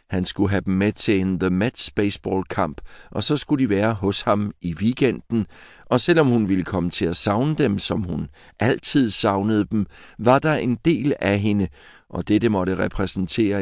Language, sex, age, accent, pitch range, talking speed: Danish, male, 60-79, native, 95-120 Hz, 195 wpm